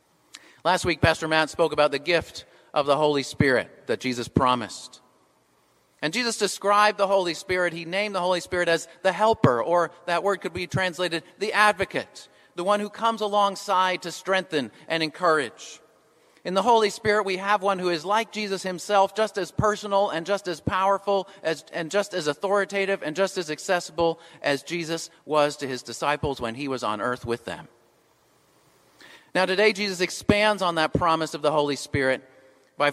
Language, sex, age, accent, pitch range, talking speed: English, male, 40-59, American, 135-185 Hz, 180 wpm